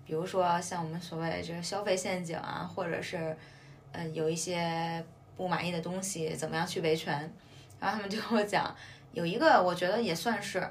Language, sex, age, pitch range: Chinese, female, 20-39, 165-220 Hz